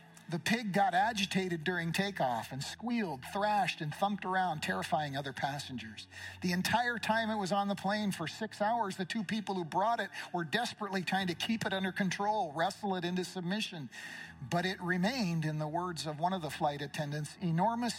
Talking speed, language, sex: 190 wpm, English, male